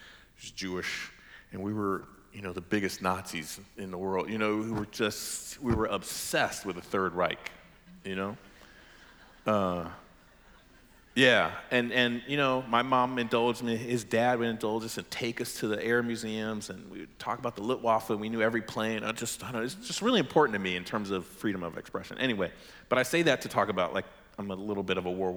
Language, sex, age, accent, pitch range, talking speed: English, male, 40-59, American, 95-135 Hz, 220 wpm